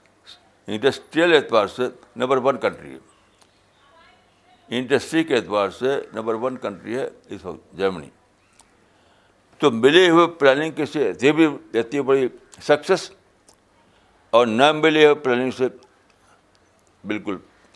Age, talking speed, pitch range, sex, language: 60-79, 110 wpm, 105-145 Hz, male, Urdu